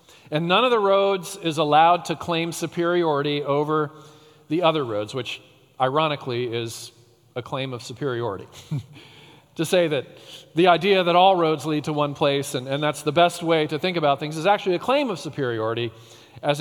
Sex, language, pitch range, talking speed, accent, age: male, English, 140-170 Hz, 180 wpm, American, 40-59